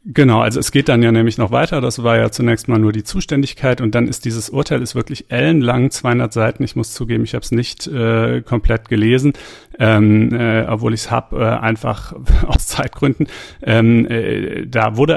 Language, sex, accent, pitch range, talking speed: German, male, German, 110-125 Hz, 200 wpm